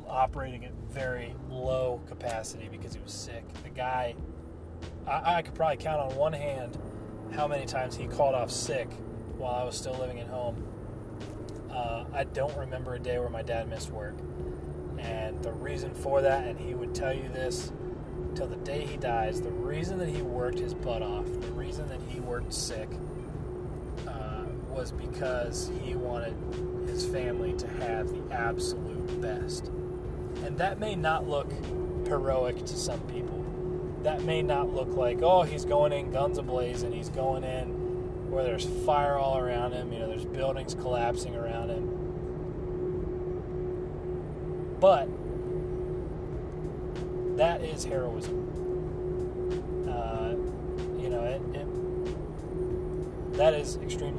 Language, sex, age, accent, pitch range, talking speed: English, male, 30-49, American, 85-130 Hz, 150 wpm